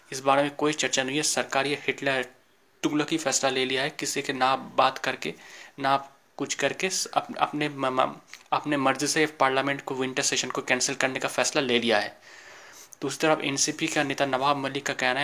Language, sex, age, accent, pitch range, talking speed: Hindi, male, 20-39, native, 135-150 Hz, 195 wpm